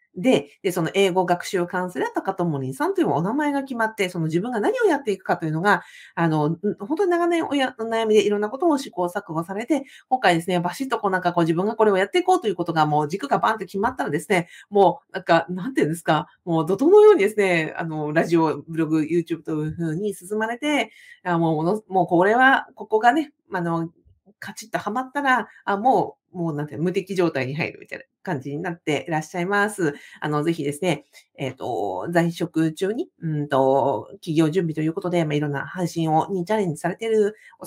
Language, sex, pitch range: Japanese, female, 160-220 Hz